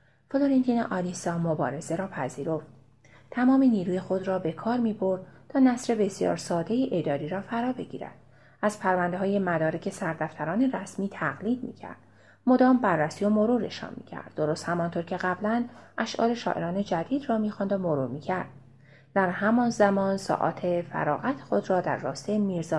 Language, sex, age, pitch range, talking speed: Persian, female, 30-49, 165-225 Hz, 155 wpm